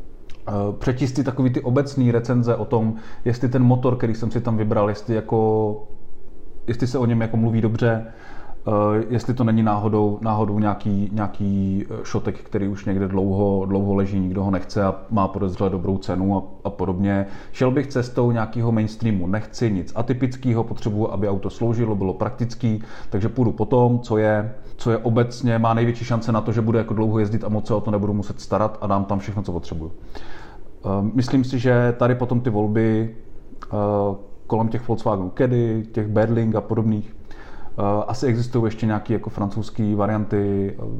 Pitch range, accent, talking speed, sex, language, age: 100-115 Hz, native, 175 wpm, male, Czech, 30-49